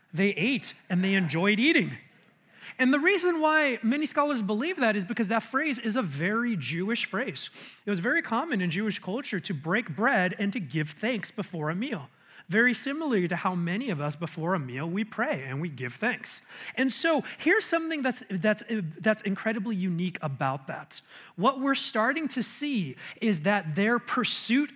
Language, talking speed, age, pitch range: English, 185 wpm, 30-49, 185-245 Hz